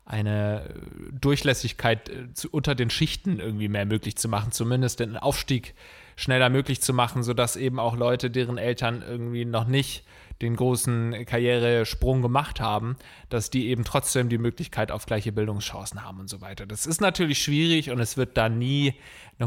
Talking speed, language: 165 wpm, German